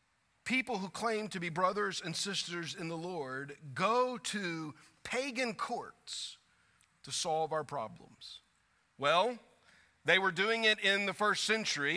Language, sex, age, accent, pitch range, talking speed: English, male, 40-59, American, 165-215 Hz, 140 wpm